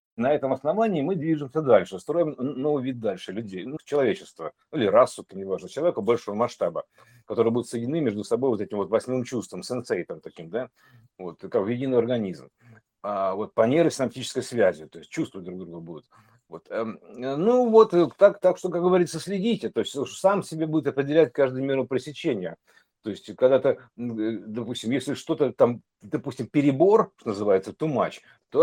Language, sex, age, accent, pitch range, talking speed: Russian, male, 50-69, native, 115-170 Hz, 170 wpm